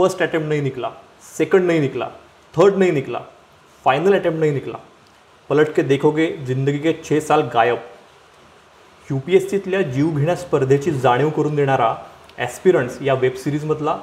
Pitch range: 135-170 Hz